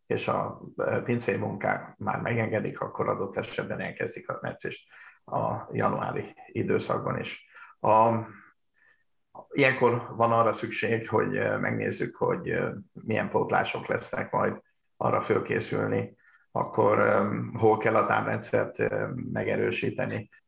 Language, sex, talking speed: Hungarian, male, 105 wpm